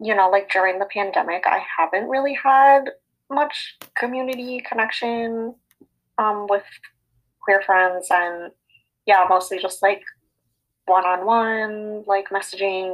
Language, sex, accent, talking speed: English, female, American, 115 wpm